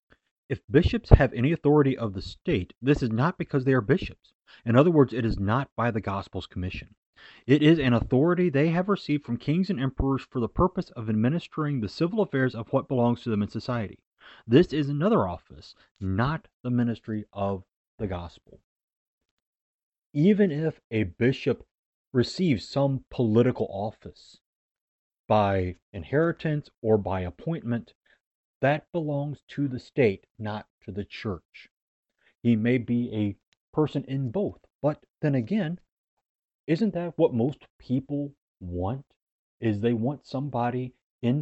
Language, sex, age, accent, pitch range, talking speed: English, male, 30-49, American, 110-145 Hz, 150 wpm